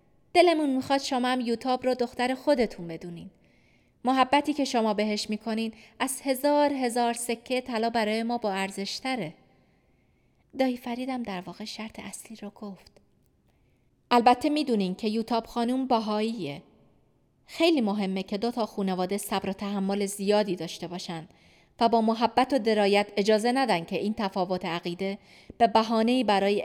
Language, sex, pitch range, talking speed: Persian, female, 195-250 Hz, 140 wpm